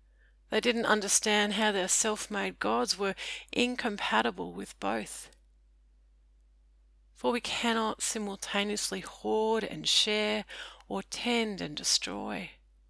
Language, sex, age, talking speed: English, female, 40-59, 100 wpm